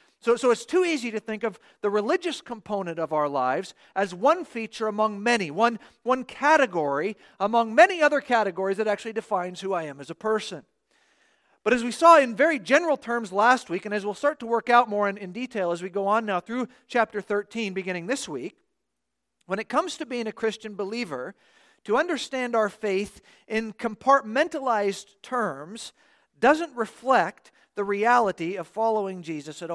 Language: English